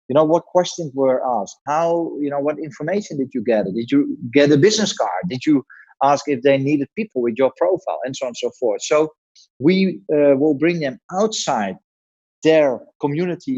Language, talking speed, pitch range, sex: English, 200 wpm, 125-155 Hz, male